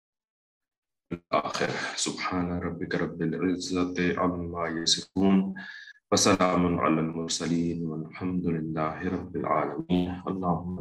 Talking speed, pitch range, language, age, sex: 85 wpm, 85-95 Hz, English, 30-49, male